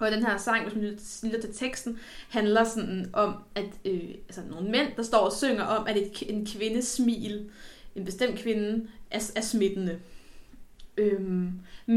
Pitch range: 210-255 Hz